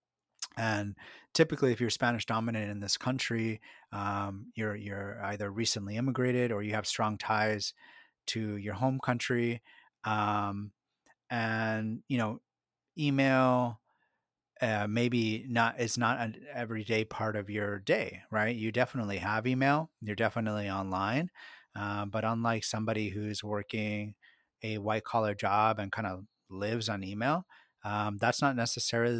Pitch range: 100-115 Hz